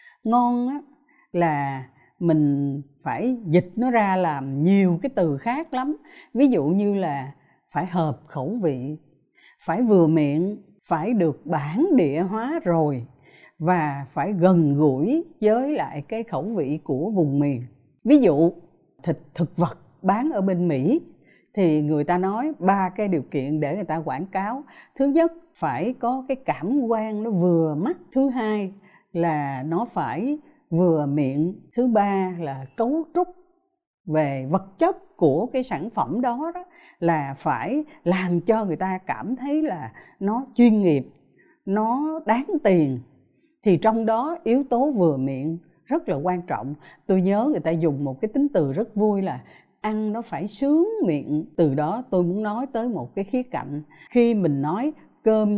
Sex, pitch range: female, 155-245 Hz